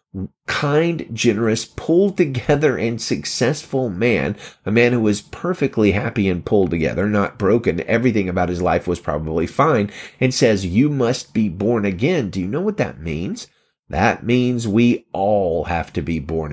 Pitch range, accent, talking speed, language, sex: 100-130 Hz, American, 165 wpm, English, male